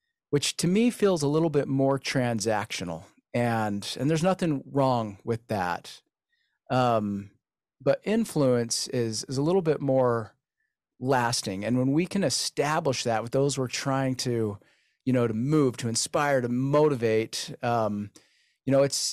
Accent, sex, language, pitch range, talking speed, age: American, male, English, 115-155 Hz, 155 wpm, 30-49